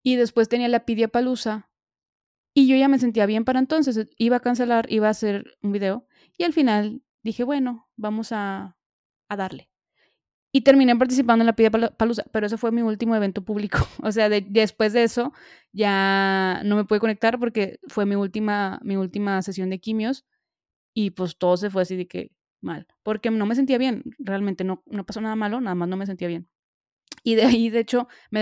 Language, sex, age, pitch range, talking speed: Spanish, female, 20-39, 195-235 Hz, 205 wpm